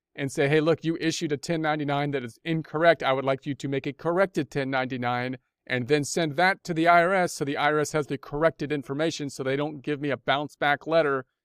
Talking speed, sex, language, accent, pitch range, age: 225 wpm, male, English, American, 135-165 Hz, 40-59